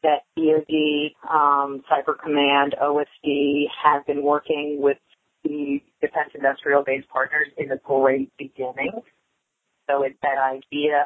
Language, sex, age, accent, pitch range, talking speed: English, female, 40-59, American, 140-155 Hz, 115 wpm